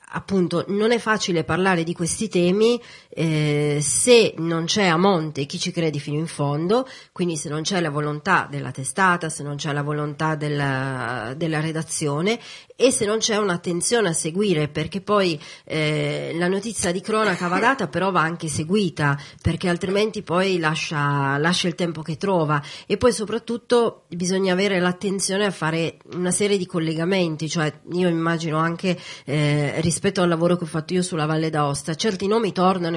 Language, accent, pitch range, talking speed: Italian, native, 155-195 Hz, 175 wpm